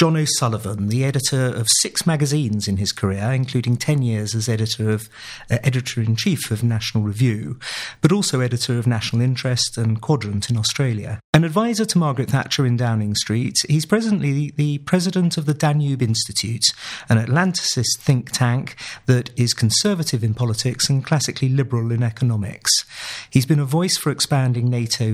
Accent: British